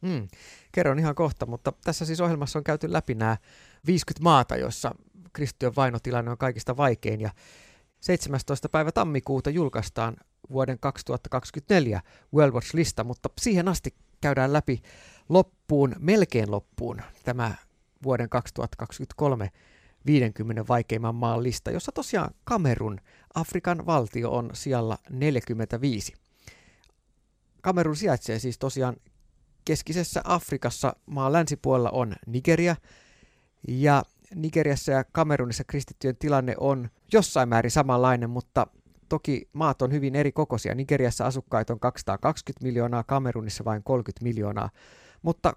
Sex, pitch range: male, 120-155 Hz